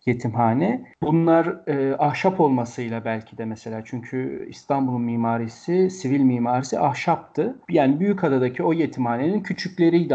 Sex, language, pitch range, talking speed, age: male, Turkish, 125-170 Hz, 110 wpm, 40-59